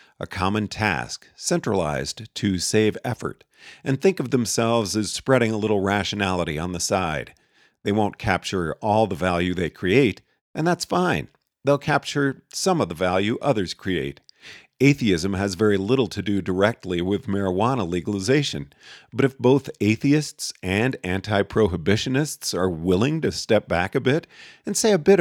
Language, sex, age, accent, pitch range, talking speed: English, male, 50-69, American, 95-140 Hz, 155 wpm